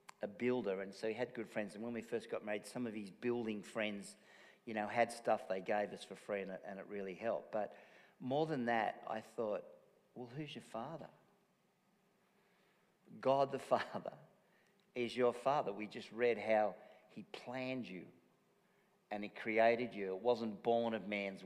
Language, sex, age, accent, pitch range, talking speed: English, male, 50-69, Australian, 110-165 Hz, 180 wpm